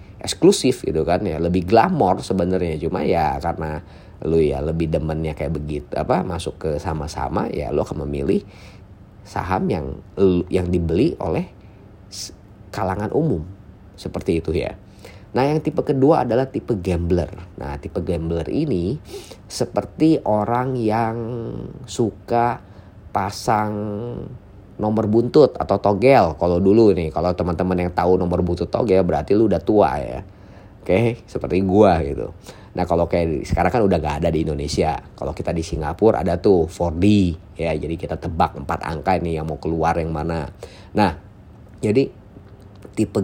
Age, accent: 30-49, native